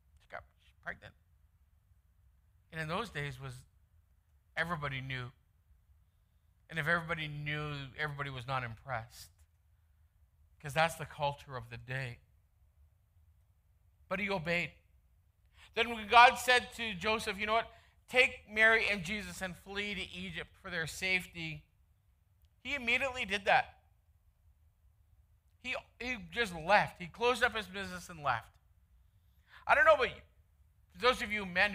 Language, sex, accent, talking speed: English, male, American, 130 wpm